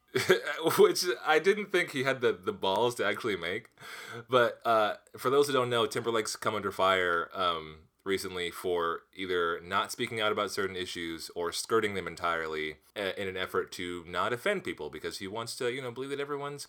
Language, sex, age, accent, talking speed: English, male, 20-39, American, 190 wpm